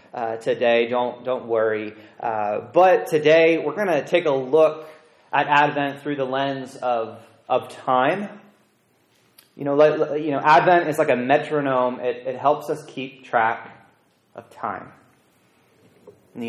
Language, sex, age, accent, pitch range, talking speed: English, male, 30-49, American, 125-165 Hz, 150 wpm